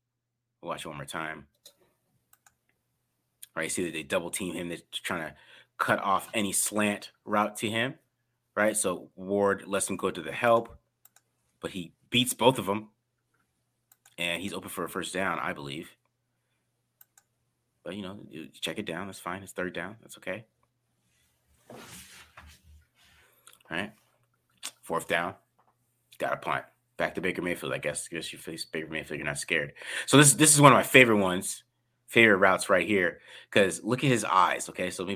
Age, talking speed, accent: 30-49, 170 wpm, American